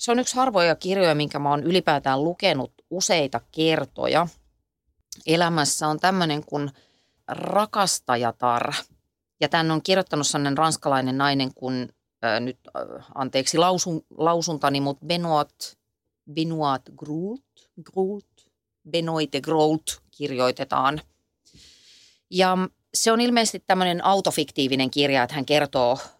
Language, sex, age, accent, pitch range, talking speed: Finnish, female, 30-49, native, 130-165 Hz, 110 wpm